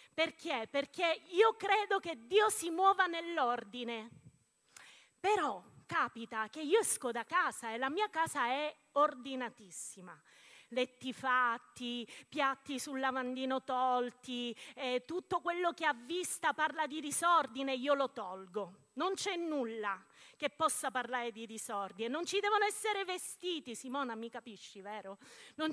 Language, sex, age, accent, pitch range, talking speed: Italian, female, 30-49, native, 245-345 Hz, 135 wpm